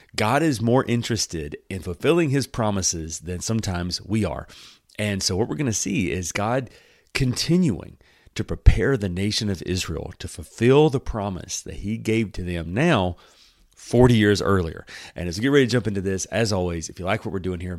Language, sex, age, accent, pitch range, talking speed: English, male, 30-49, American, 90-120 Hz, 200 wpm